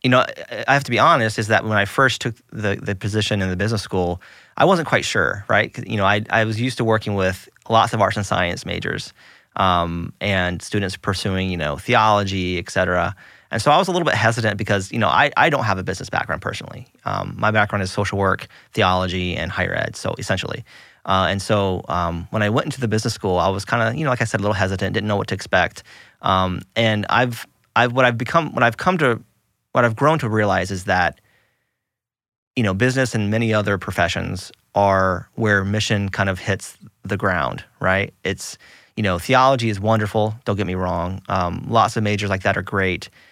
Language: English